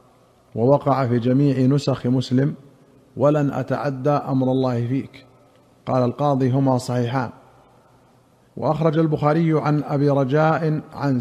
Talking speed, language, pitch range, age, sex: 105 wpm, Arabic, 135-145 Hz, 50-69, male